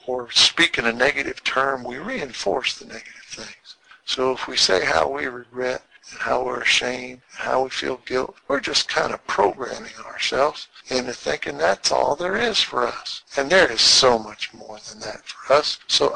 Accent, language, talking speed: American, English, 190 wpm